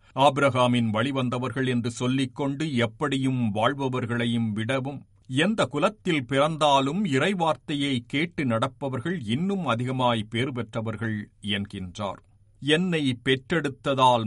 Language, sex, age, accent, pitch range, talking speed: Tamil, male, 50-69, native, 105-140 Hz, 90 wpm